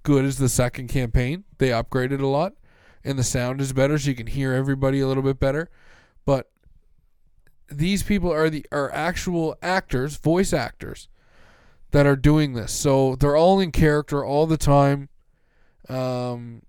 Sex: male